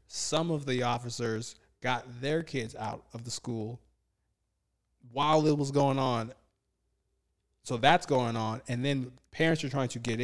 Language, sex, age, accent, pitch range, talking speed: English, male, 20-39, American, 120-155 Hz, 160 wpm